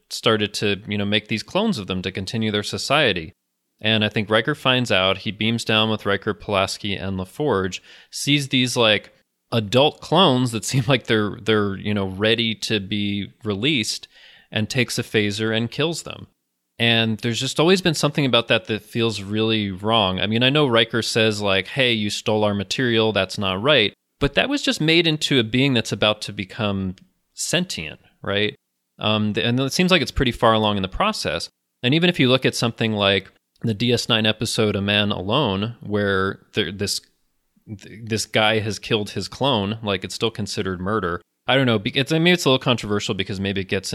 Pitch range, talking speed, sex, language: 100-120 Hz, 200 wpm, male, English